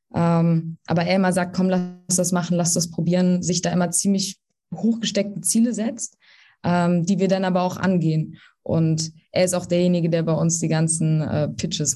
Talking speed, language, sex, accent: 190 wpm, German, female, German